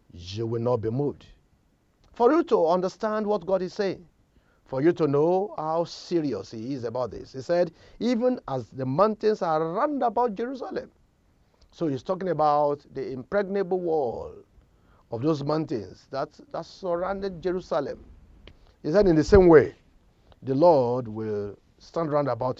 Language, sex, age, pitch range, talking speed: English, male, 50-69, 115-180 Hz, 155 wpm